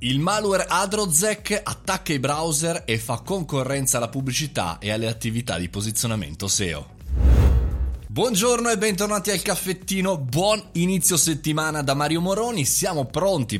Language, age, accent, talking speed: Italian, 20-39, native, 130 wpm